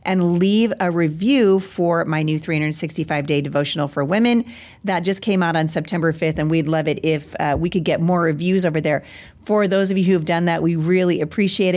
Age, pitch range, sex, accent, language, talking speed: 40-59, 155-190 Hz, female, American, English, 210 wpm